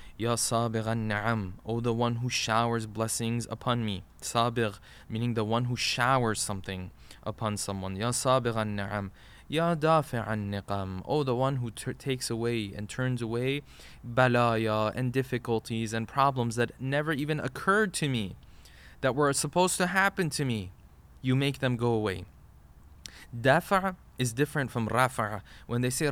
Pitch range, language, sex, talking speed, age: 105-135 Hz, English, male, 140 wpm, 20-39